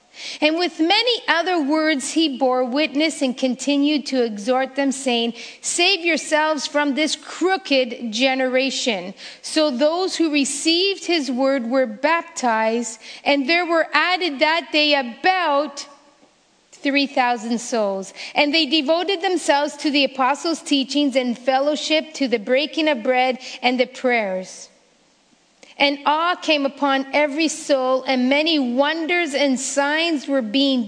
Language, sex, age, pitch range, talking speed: English, female, 40-59, 235-295 Hz, 130 wpm